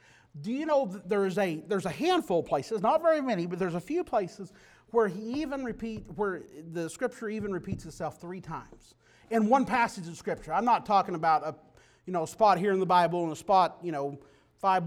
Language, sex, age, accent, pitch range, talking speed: English, male, 40-59, American, 155-215 Hz, 225 wpm